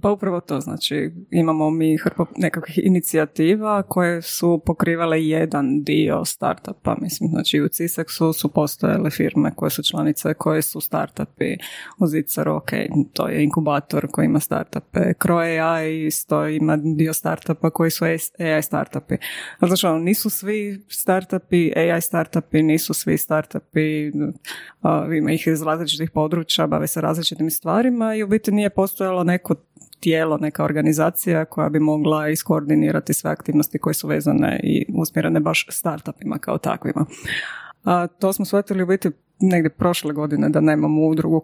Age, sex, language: 20-39, female, Croatian